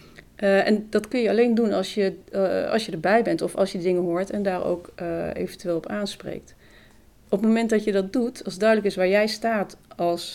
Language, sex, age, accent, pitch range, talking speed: Dutch, female, 40-59, Dutch, 180-215 Hz, 245 wpm